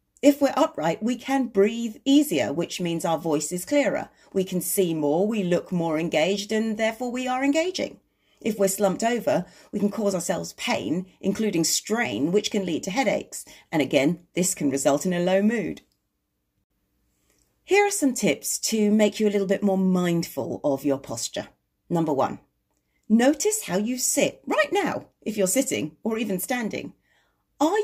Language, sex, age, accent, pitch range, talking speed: English, female, 40-59, British, 180-250 Hz, 175 wpm